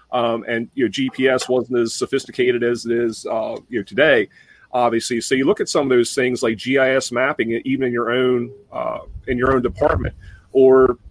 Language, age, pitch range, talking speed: English, 40-59, 120-135 Hz, 200 wpm